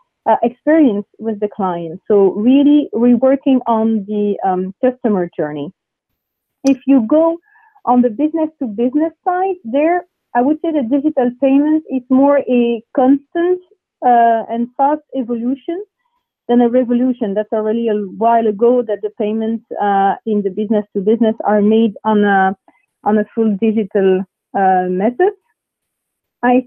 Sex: female